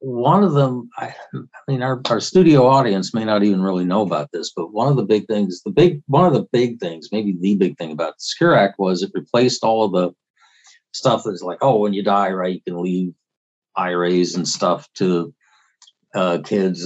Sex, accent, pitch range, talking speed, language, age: male, American, 90-110 Hz, 215 wpm, English, 50-69